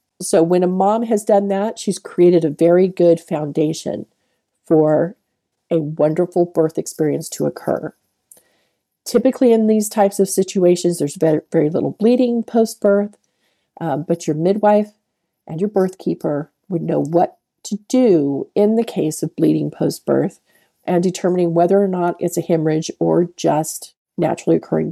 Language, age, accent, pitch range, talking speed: English, 40-59, American, 170-225 Hz, 145 wpm